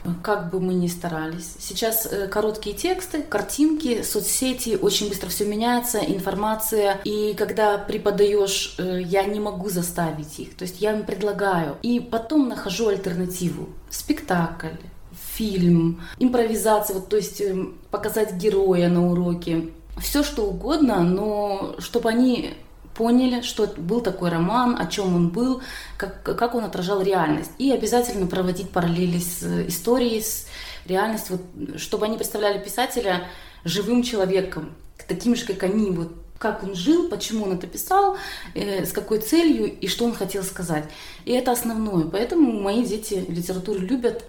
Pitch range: 185-225 Hz